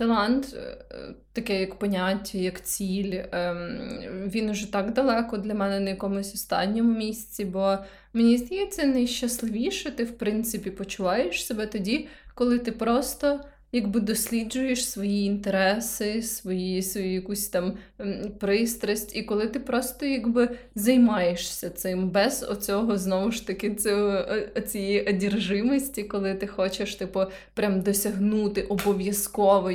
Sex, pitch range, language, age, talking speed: female, 195-235 Hz, Ukrainian, 20-39, 120 wpm